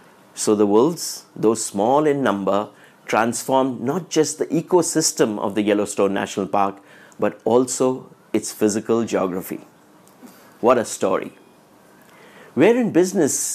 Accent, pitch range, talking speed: Indian, 115-150 Hz, 125 wpm